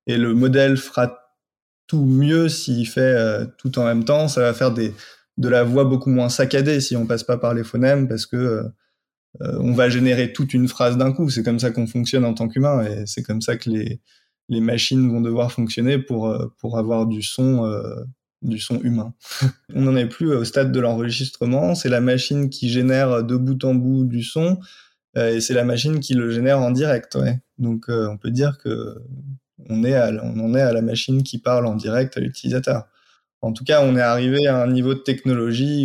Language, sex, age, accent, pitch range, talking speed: French, male, 20-39, French, 115-130 Hz, 220 wpm